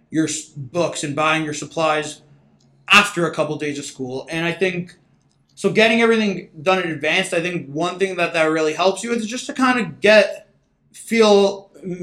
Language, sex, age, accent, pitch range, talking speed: English, male, 20-39, American, 150-185 Hz, 185 wpm